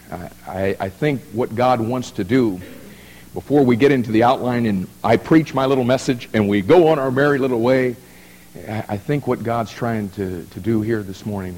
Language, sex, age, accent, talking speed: English, male, 50-69, American, 205 wpm